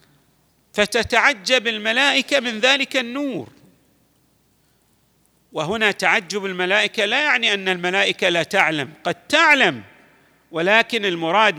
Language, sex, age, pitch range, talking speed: Arabic, male, 40-59, 180-235 Hz, 95 wpm